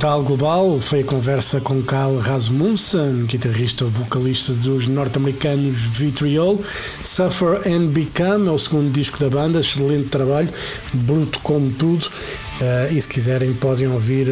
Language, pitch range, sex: Portuguese, 130-150 Hz, male